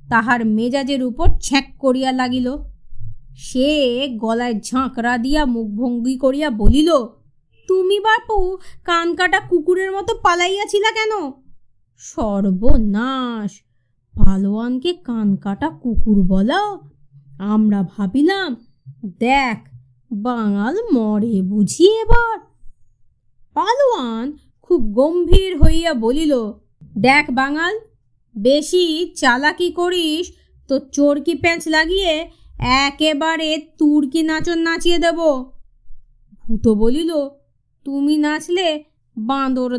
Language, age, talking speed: Bengali, 20-39, 85 wpm